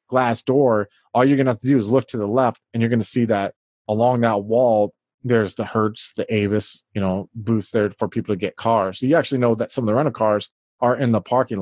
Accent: American